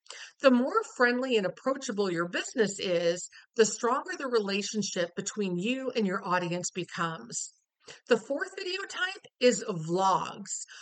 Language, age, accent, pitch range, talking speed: English, 50-69, American, 185-260 Hz, 135 wpm